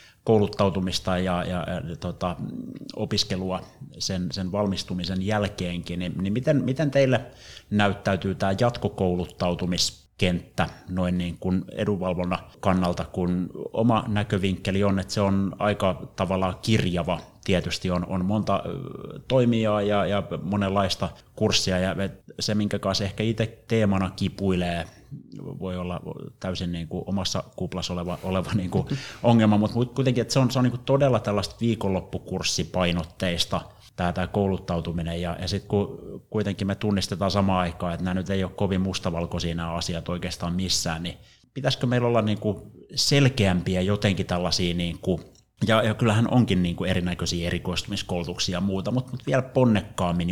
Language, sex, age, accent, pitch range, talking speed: Finnish, male, 30-49, native, 90-110 Hz, 140 wpm